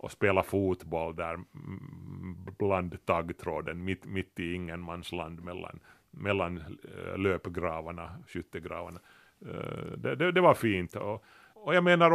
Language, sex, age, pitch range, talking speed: Swedish, male, 30-49, 90-115 Hz, 115 wpm